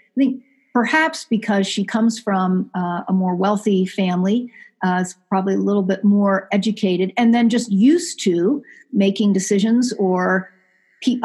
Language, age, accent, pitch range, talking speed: English, 50-69, American, 190-230 Hz, 155 wpm